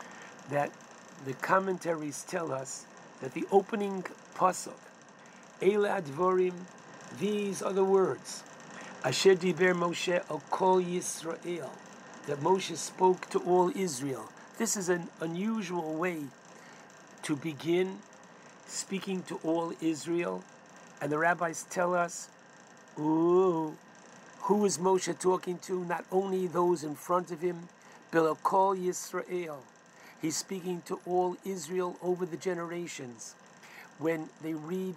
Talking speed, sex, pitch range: 120 wpm, male, 160-185 Hz